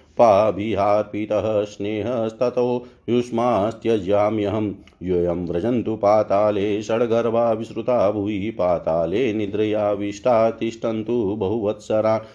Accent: native